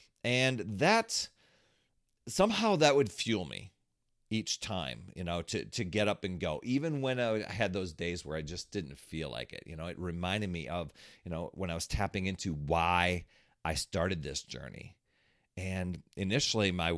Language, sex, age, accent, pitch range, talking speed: English, male, 40-59, American, 85-125 Hz, 180 wpm